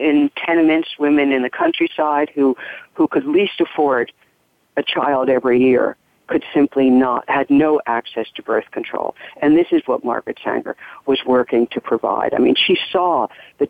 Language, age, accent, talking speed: English, 50-69, American, 170 wpm